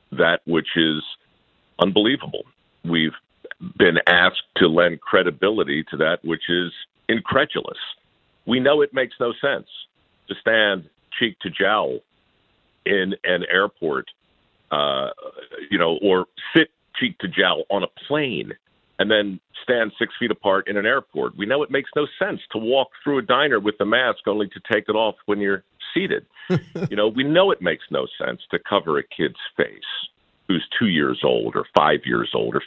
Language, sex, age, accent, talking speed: English, male, 50-69, American, 170 wpm